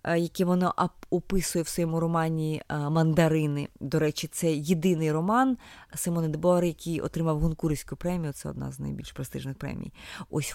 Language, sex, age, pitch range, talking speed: Ukrainian, female, 20-39, 145-185 Hz, 140 wpm